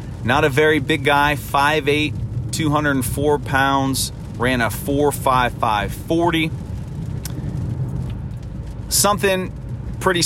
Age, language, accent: 30-49, English, American